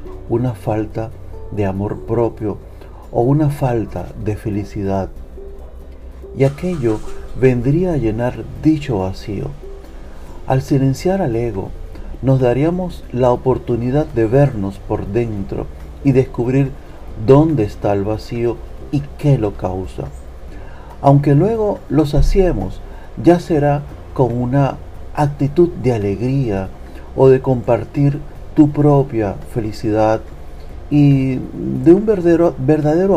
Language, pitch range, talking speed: Spanish, 95-140 Hz, 110 wpm